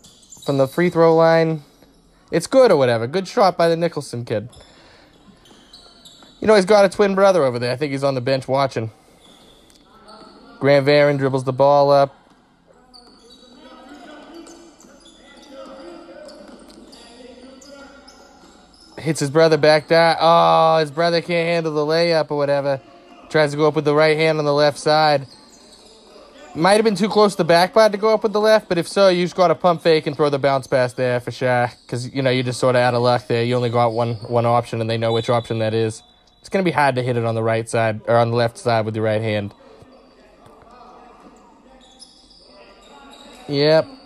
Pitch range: 120-195 Hz